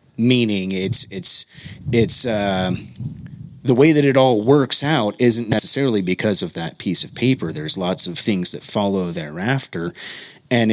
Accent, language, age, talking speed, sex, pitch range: American, English, 30-49, 155 wpm, male, 105-135 Hz